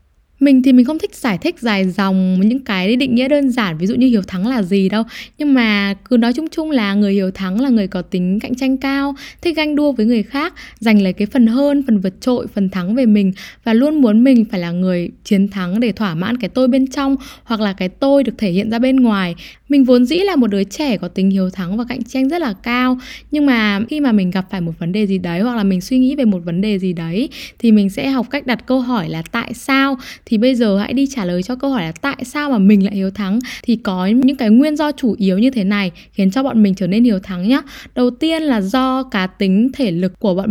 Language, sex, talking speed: Vietnamese, female, 270 wpm